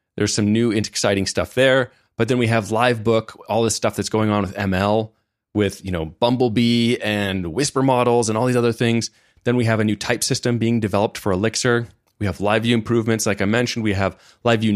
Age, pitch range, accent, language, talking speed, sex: 30-49, 105-135 Hz, American, English, 210 wpm, male